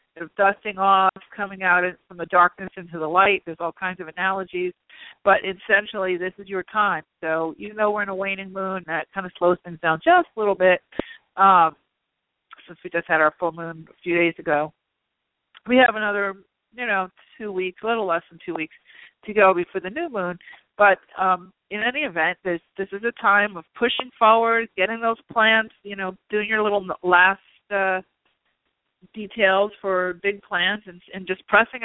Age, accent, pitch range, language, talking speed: 50-69, American, 180-215 Hz, English, 190 wpm